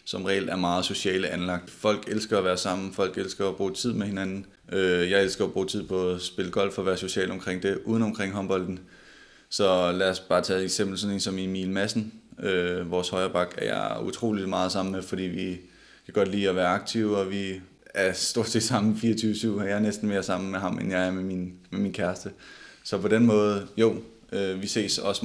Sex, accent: male, native